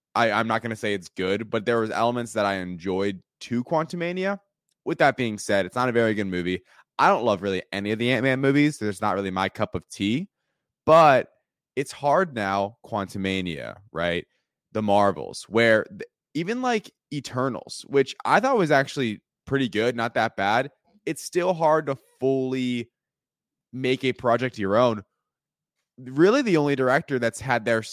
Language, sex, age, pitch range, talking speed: English, male, 20-39, 105-140 Hz, 175 wpm